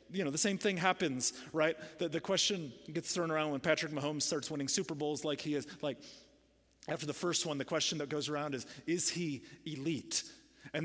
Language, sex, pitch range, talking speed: English, male, 135-185 Hz, 210 wpm